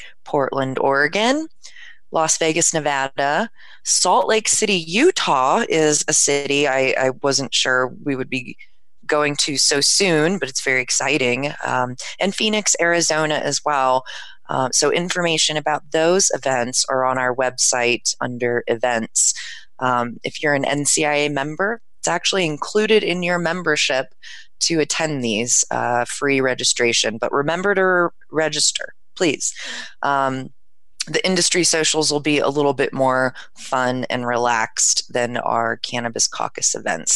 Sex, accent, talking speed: female, American, 140 wpm